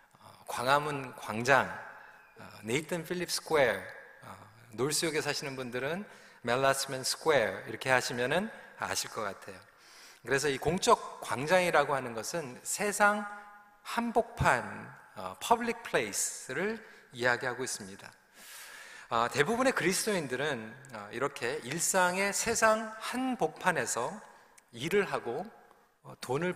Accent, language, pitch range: native, Korean, 135-220 Hz